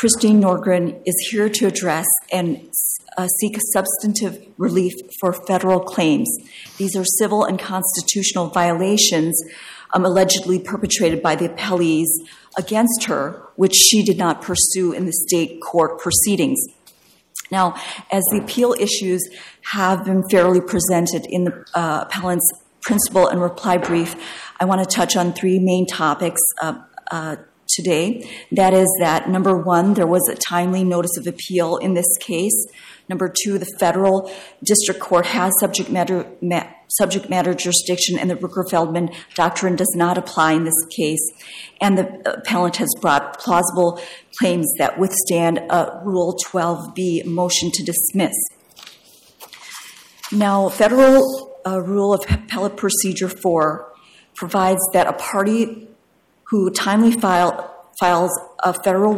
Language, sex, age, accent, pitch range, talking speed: English, female, 40-59, American, 175-200 Hz, 135 wpm